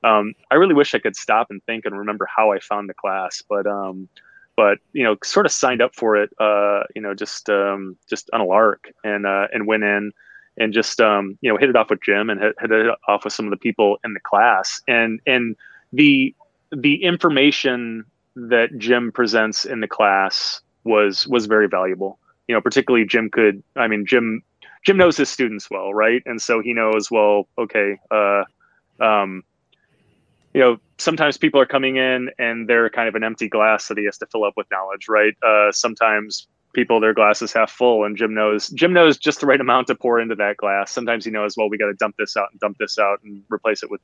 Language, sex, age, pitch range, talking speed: English, male, 20-39, 105-130 Hz, 220 wpm